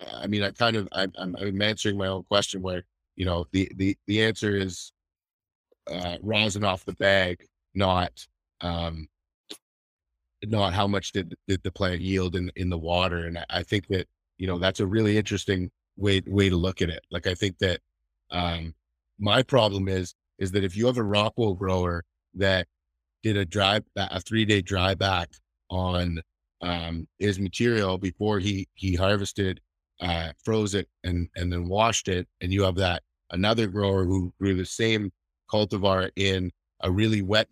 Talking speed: 180 wpm